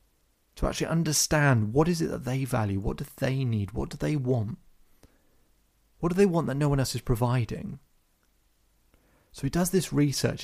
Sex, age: male, 30-49